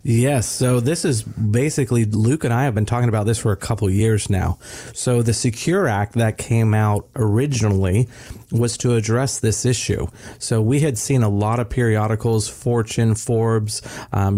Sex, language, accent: male, English, American